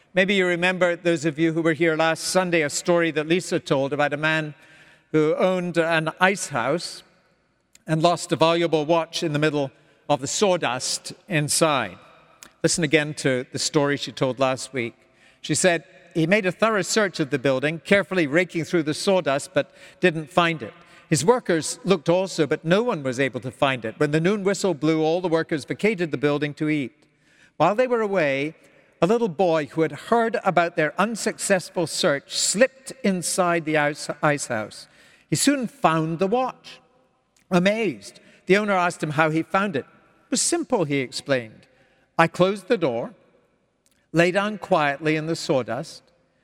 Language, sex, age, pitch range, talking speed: English, male, 60-79, 145-185 Hz, 175 wpm